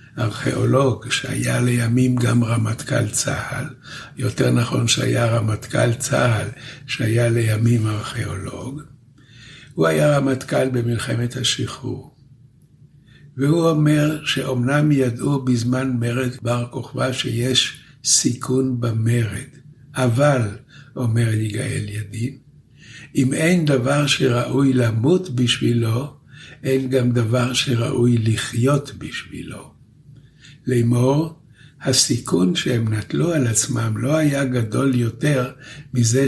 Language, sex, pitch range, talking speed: Hebrew, male, 120-140 Hz, 95 wpm